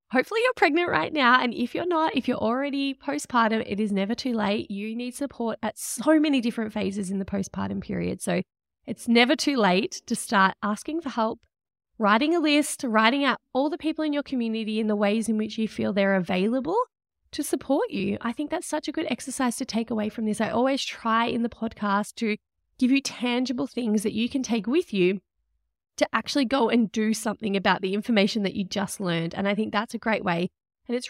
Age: 20-39